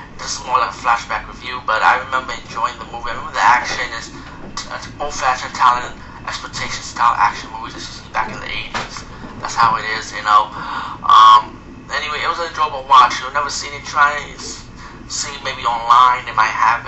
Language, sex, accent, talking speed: English, male, American, 200 wpm